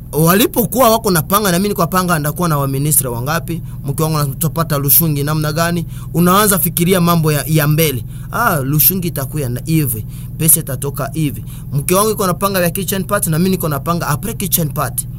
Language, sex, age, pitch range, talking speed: Swahili, male, 30-49, 135-175 Hz, 200 wpm